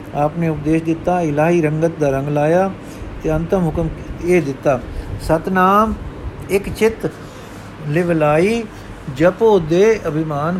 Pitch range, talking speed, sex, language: 140-170 Hz, 115 wpm, male, Punjabi